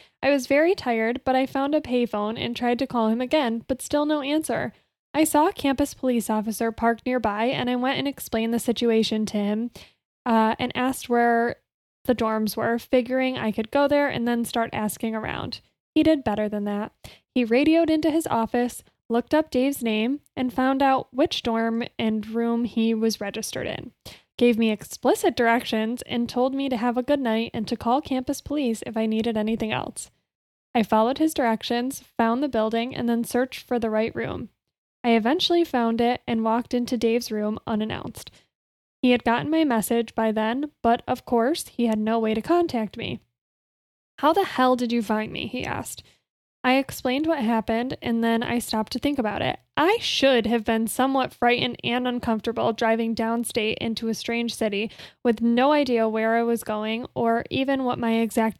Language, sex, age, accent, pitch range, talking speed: English, female, 10-29, American, 225-255 Hz, 195 wpm